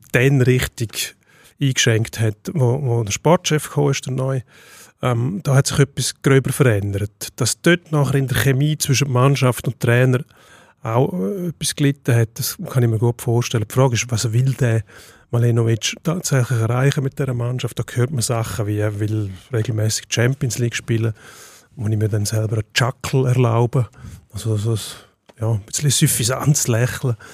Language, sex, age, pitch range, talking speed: German, male, 30-49, 115-140 Hz, 170 wpm